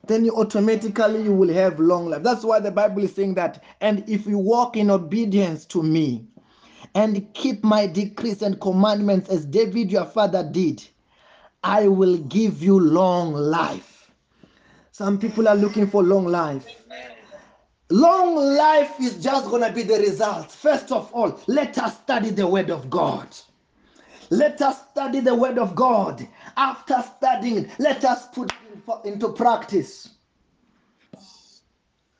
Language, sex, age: English, male, 30-49